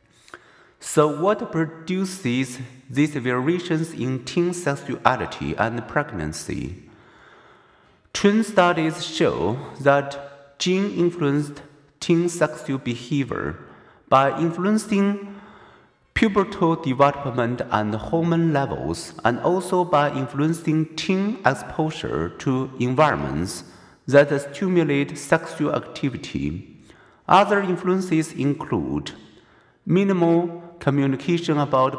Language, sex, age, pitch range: Chinese, male, 50-69, 130-170 Hz